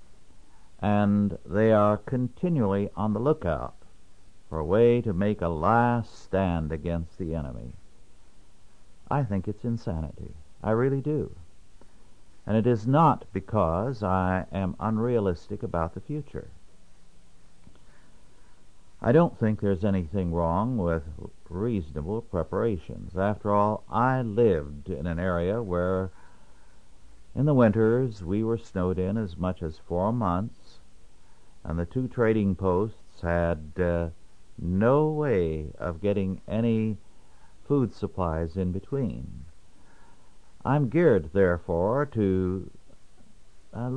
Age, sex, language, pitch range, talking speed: 60-79, male, English, 85-115 Hz, 115 wpm